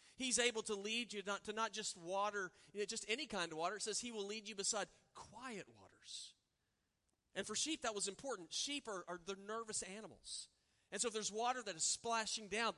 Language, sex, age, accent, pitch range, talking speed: English, male, 40-59, American, 185-225 Hz, 205 wpm